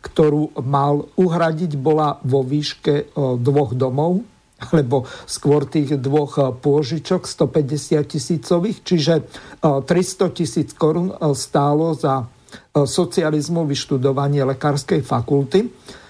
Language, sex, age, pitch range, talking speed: Slovak, male, 50-69, 140-160 Hz, 95 wpm